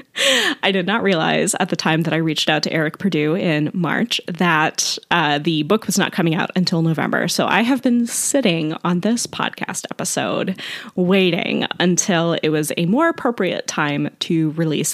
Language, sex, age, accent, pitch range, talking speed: English, female, 20-39, American, 165-210 Hz, 180 wpm